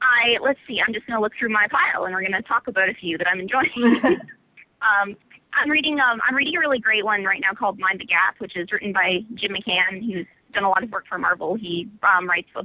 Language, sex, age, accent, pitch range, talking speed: English, female, 20-39, American, 190-235 Hz, 265 wpm